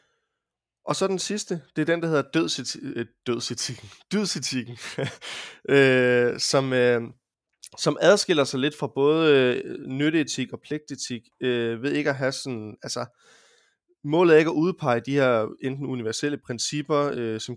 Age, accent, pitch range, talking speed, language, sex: 20-39, native, 120-145 Hz, 155 wpm, Danish, male